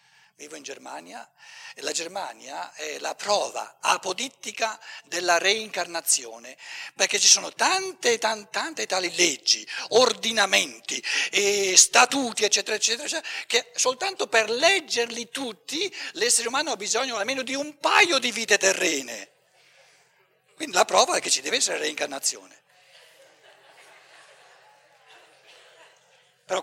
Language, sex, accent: Italian, male, native